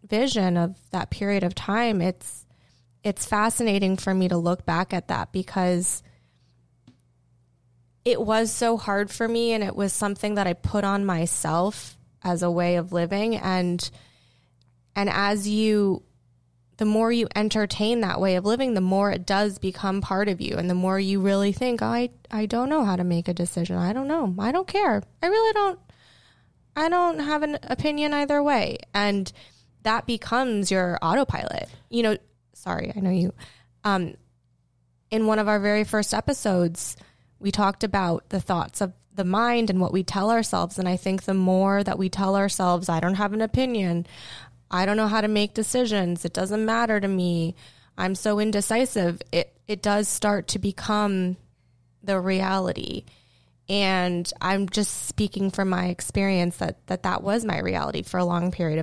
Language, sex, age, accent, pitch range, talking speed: English, female, 20-39, American, 175-215 Hz, 175 wpm